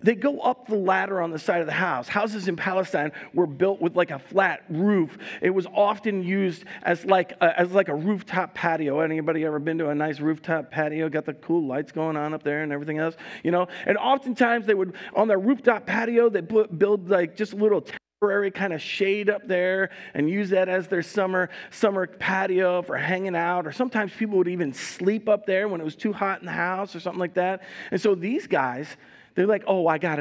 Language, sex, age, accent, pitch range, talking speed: English, male, 40-59, American, 160-200 Hz, 225 wpm